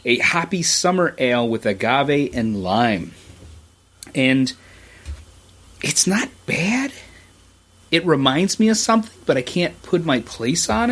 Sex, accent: male, American